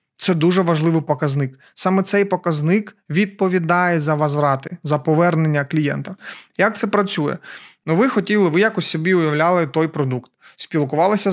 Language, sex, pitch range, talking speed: Russian, male, 155-190 Hz, 140 wpm